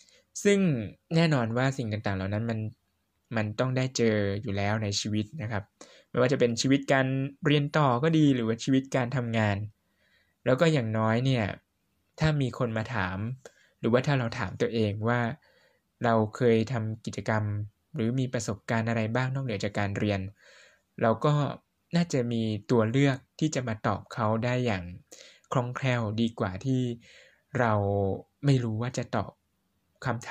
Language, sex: Thai, male